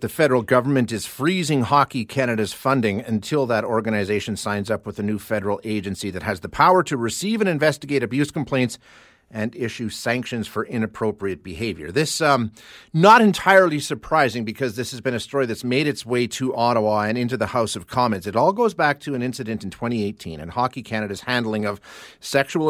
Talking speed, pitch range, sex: 190 wpm, 105-135 Hz, male